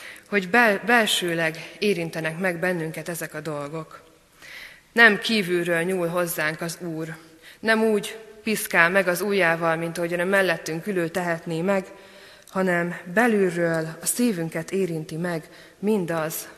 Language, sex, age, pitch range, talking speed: Hungarian, female, 20-39, 165-200 Hz, 125 wpm